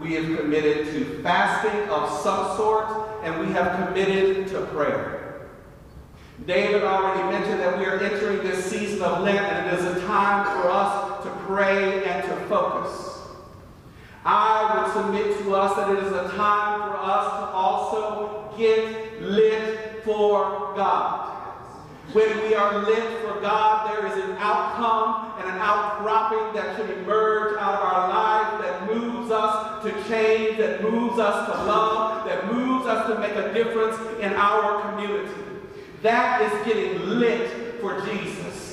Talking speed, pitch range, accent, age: 155 wpm, 200-225 Hz, American, 50-69